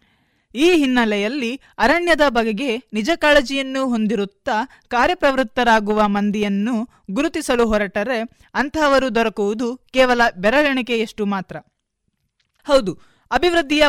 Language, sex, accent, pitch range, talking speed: Kannada, female, native, 220-280 Hz, 80 wpm